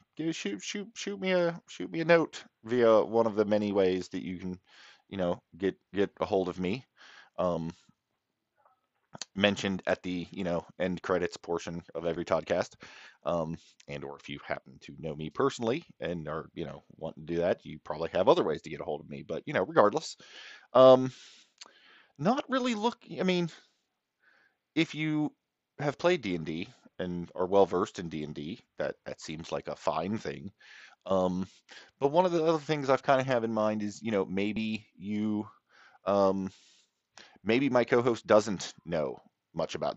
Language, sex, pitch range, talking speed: English, male, 85-130 Hz, 185 wpm